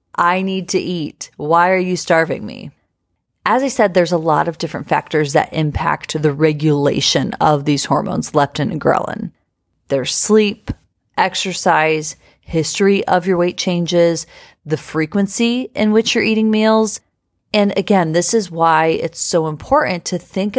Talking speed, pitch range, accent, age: 155 wpm, 155-190 Hz, American, 30-49